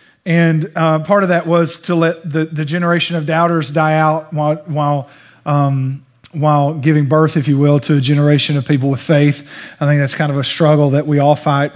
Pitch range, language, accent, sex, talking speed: 145-175 Hz, English, American, male, 215 wpm